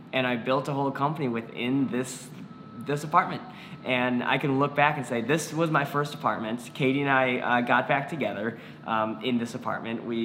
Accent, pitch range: American, 120-145 Hz